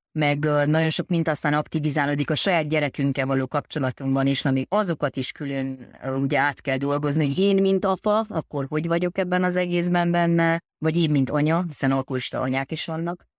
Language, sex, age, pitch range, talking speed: Hungarian, female, 30-49, 140-175 Hz, 180 wpm